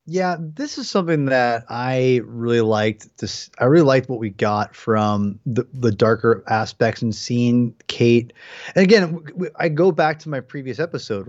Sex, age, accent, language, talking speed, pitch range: male, 30-49, American, English, 170 wpm, 115-145 Hz